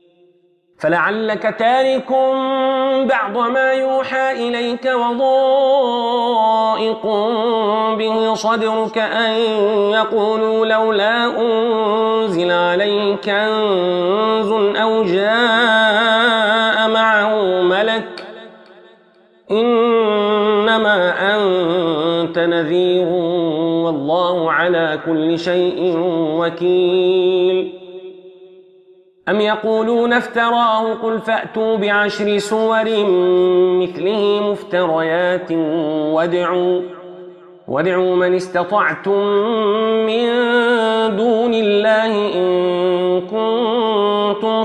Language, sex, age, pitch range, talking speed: Arabic, male, 40-59, 180-225 Hz, 60 wpm